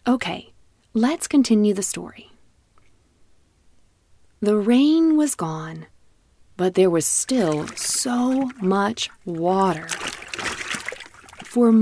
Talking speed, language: 85 wpm, English